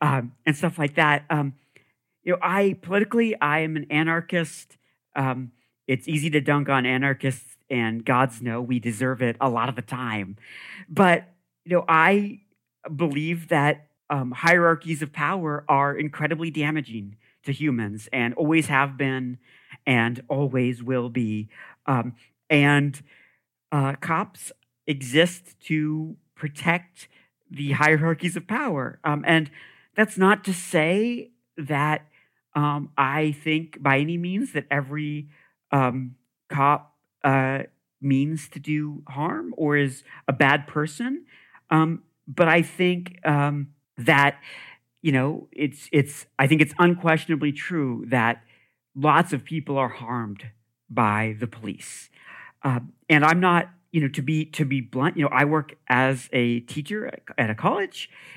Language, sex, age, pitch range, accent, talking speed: English, male, 50-69, 130-160 Hz, American, 140 wpm